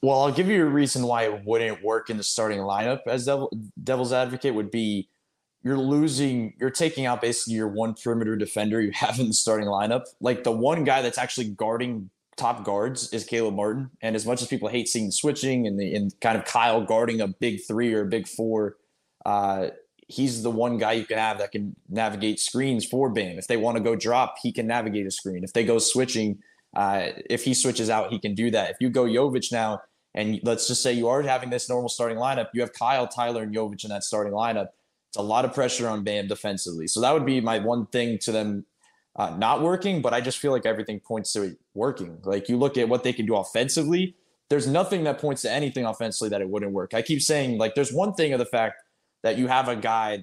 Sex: male